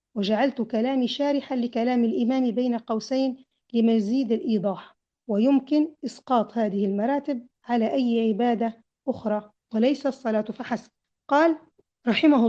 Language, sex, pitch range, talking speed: Arabic, female, 220-280 Hz, 105 wpm